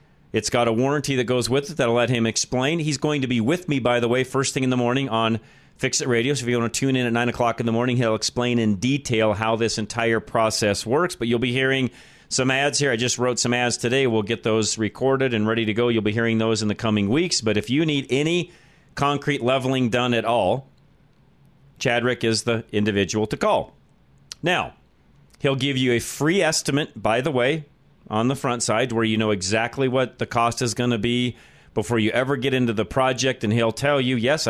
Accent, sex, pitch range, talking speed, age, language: American, male, 115-135 Hz, 235 wpm, 40-59, English